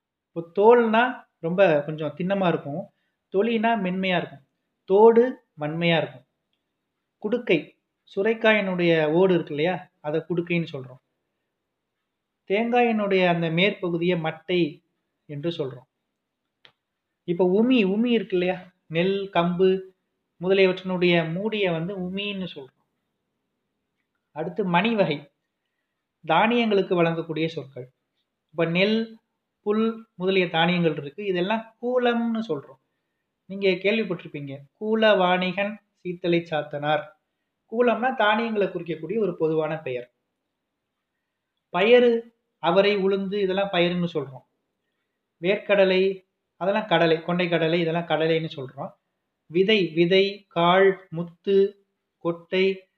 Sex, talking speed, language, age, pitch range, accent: male, 95 wpm, Tamil, 30-49, 165-205 Hz, native